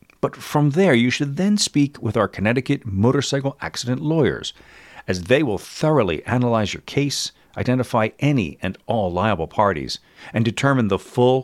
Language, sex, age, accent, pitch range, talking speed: English, male, 40-59, American, 105-145 Hz, 155 wpm